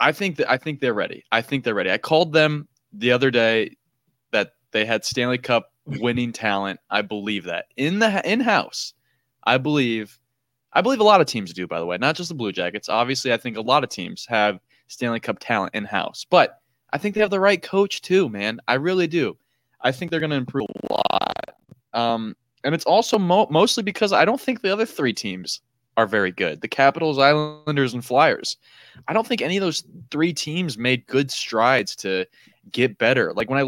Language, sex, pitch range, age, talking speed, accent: English, male, 120-165 Hz, 20-39, 215 wpm, American